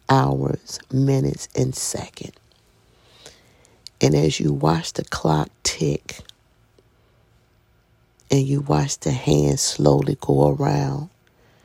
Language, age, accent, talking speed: English, 50-69, American, 100 wpm